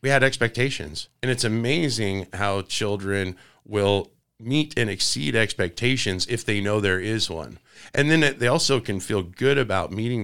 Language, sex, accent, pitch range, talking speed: English, male, American, 100-120 Hz, 165 wpm